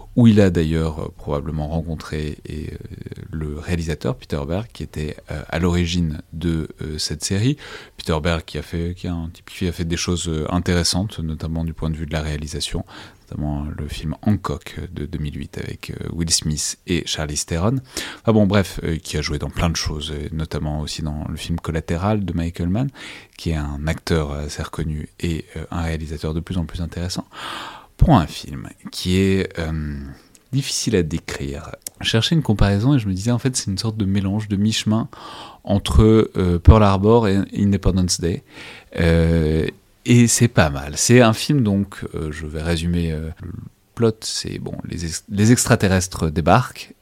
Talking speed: 190 wpm